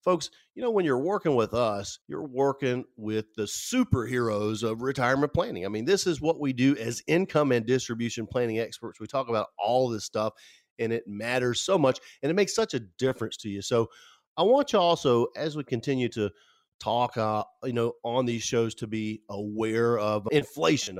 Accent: American